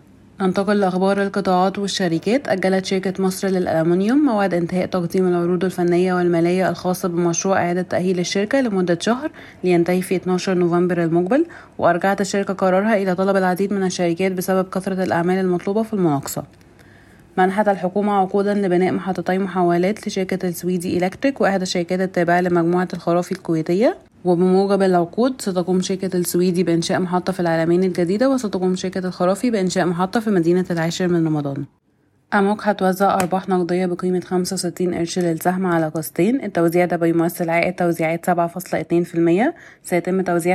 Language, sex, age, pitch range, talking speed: Arabic, female, 30-49, 170-190 Hz, 145 wpm